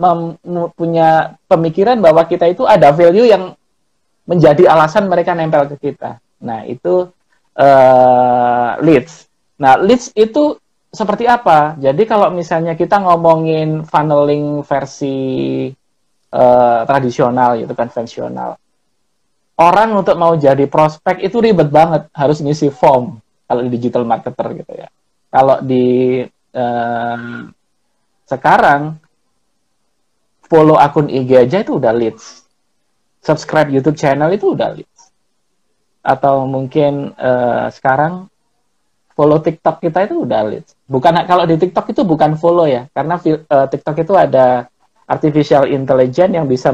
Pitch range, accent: 135-175 Hz, native